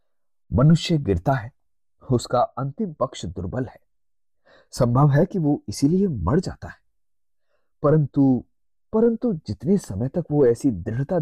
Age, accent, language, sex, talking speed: 30-49, native, Hindi, male, 130 wpm